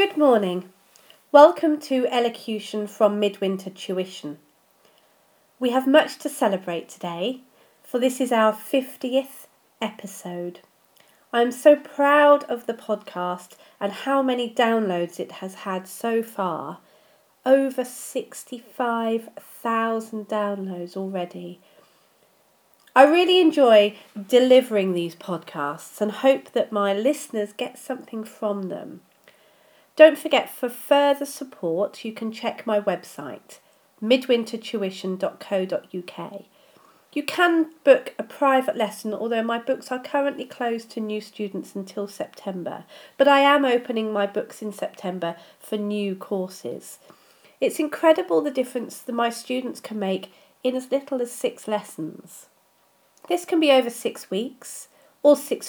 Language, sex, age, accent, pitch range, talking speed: English, female, 40-59, British, 200-270 Hz, 125 wpm